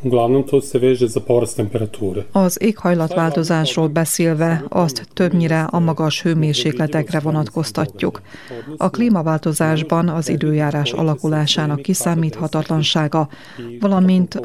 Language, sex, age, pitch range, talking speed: Hungarian, female, 30-49, 155-175 Hz, 65 wpm